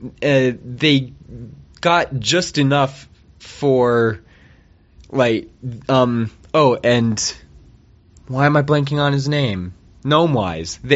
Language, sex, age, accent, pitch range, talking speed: English, male, 20-39, American, 105-135 Hz, 105 wpm